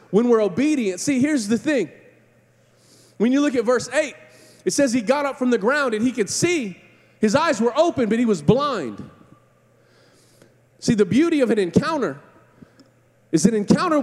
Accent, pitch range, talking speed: American, 185-270 Hz, 180 wpm